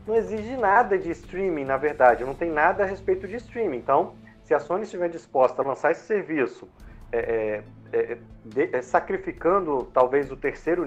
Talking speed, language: 175 wpm, Portuguese